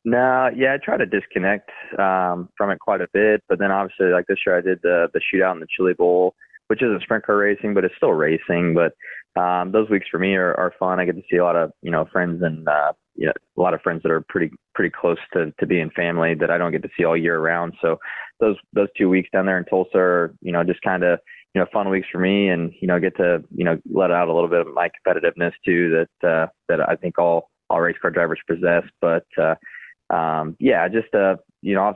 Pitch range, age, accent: 85-95 Hz, 20-39, American